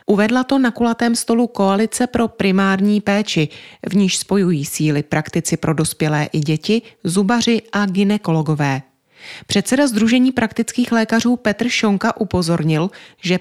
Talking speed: 130 wpm